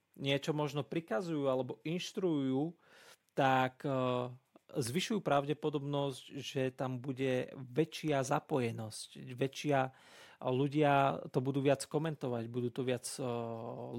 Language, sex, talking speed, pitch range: Slovak, male, 105 wpm, 130-155 Hz